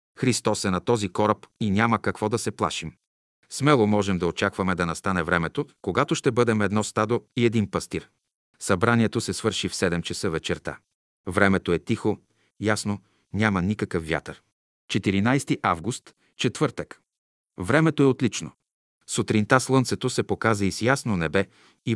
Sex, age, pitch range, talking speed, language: male, 40-59, 95-120 Hz, 150 wpm, Bulgarian